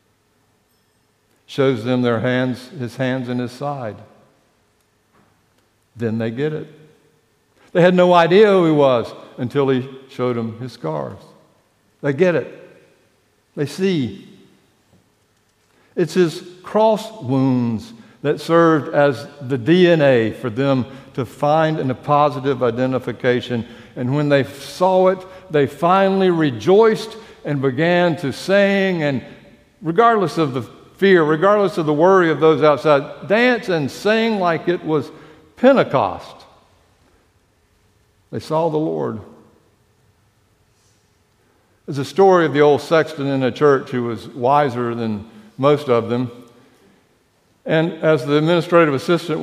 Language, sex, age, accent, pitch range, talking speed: English, male, 60-79, American, 120-160 Hz, 125 wpm